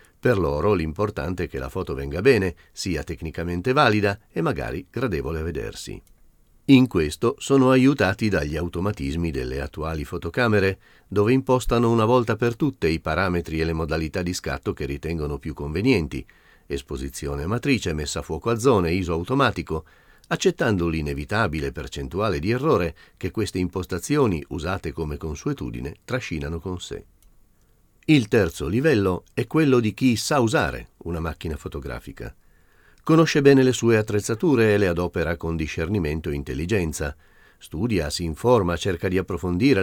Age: 40-59